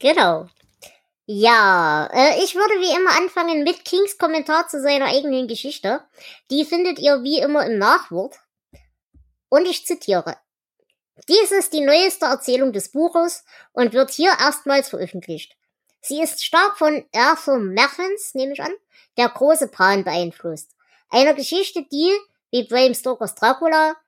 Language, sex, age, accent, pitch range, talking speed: German, male, 20-39, German, 225-315 Hz, 140 wpm